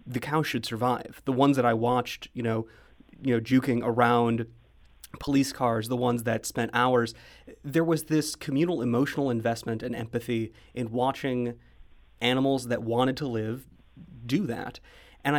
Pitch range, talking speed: 115-135 Hz, 150 wpm